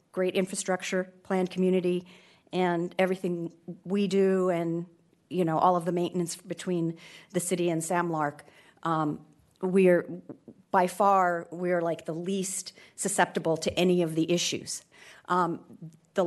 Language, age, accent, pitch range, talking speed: English, 40-59, American, 170-195 Hz, 140 wpm